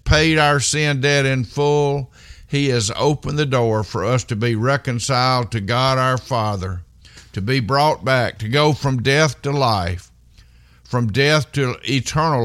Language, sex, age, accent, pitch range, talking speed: English, male, 50-69, American, 100-135 Hz, 165 wpm